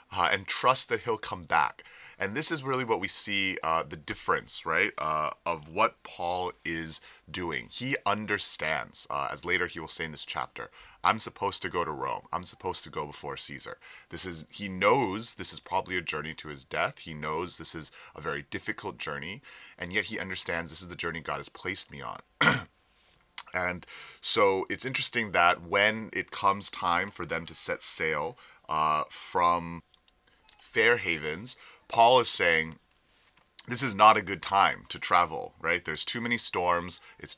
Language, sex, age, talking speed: English, male, 30-49, 185 wpm